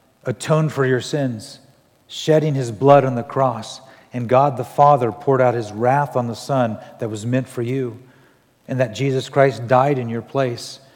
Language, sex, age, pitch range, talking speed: English, male, 50-69, 125-165 Hz, 185 wpm